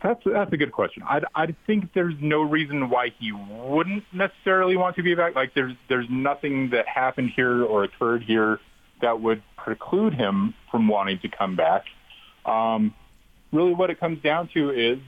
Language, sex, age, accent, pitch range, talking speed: English, male, 40-59, American, 110-140 Hz, 185 wpm